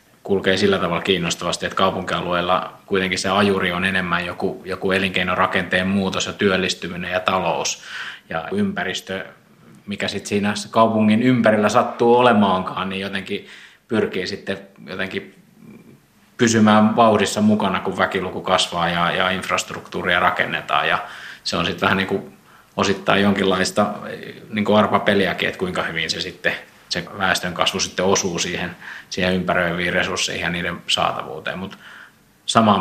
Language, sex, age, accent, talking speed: Finnish, male, 20-39, native, 140 wpm